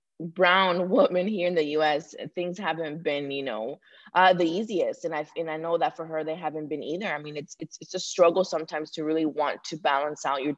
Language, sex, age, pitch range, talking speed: English, female, 20-39, 150-175 Hz, 240 wpm